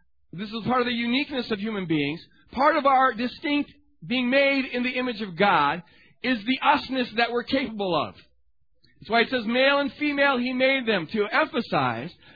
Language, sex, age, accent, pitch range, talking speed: English, male, 40-59, American, 200-260 Hz, 190 wpm